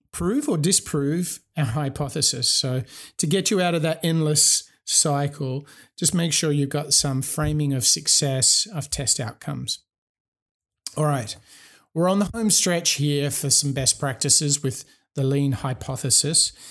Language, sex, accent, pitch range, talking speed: English, male, Australian, 135-155 Hz, 150 wpm